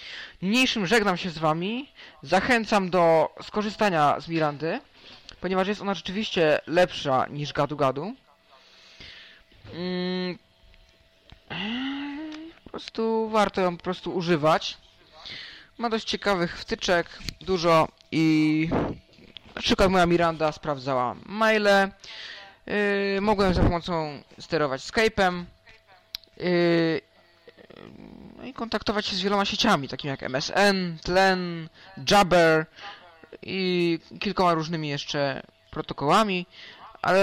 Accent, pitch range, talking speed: native, 150-195 Hz, 95 wpm